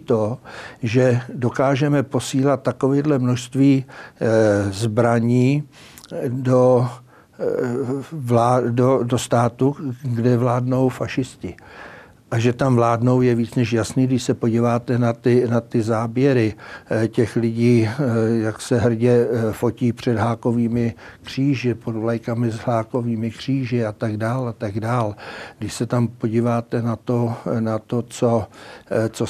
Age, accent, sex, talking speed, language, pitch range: 60-79, native, male, 125 wpm, Czech, 115-125 Hz